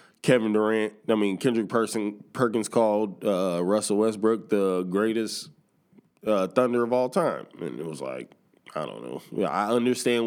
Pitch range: 100-120 Hz